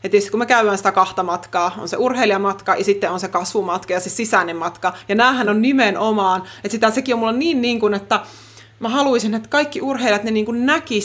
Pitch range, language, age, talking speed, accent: 200-290 Hz, Finnish, 20-39, 190 wpm, native